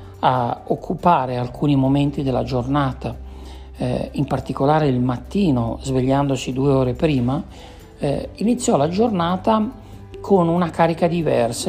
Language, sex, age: Italian, male, 60-79